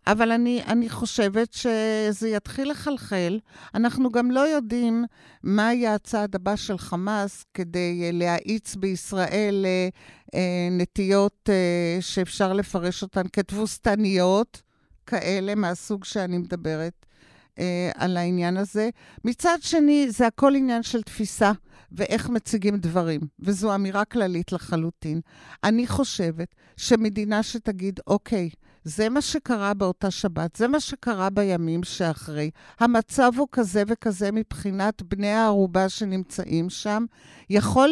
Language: Hebrew